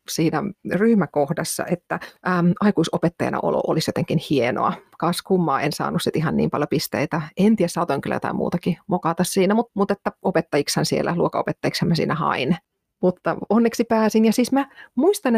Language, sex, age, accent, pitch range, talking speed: Finnish, female, 30-49, native, 170-245 Hz, 155 wpm